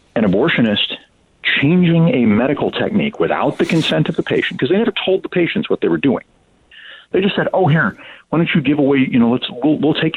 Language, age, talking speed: English, 50-69, 225 wpm